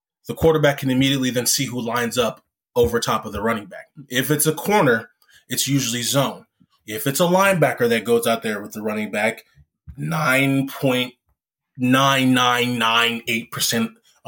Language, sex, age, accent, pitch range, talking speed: English, male, 20-39, American, 115-150 Hz, 145 wpm